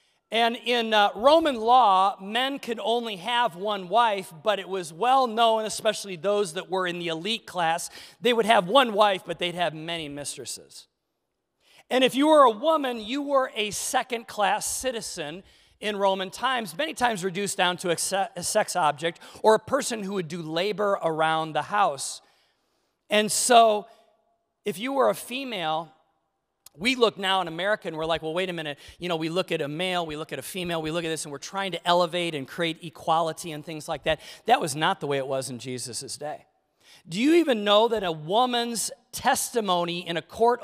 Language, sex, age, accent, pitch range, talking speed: English, male, 40-59, American, 165-230 Hz, 200 wpm